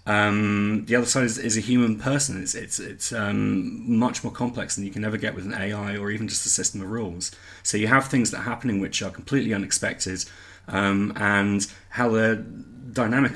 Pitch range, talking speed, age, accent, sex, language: 100-125 Hz, 210 wpm, 30-49, British, male, English